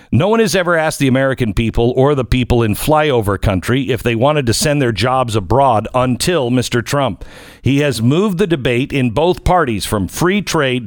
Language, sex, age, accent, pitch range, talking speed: English, male, 50-69, American, 125-170 Hz, 200 wpm